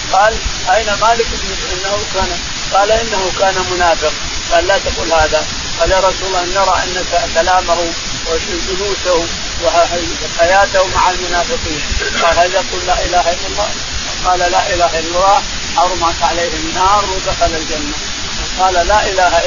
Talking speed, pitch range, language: 125 wpm, 180-215 Hz, Arabic